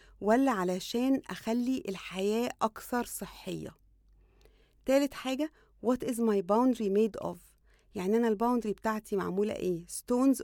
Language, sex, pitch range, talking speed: English, female, 195-250 Hz, 120 wpm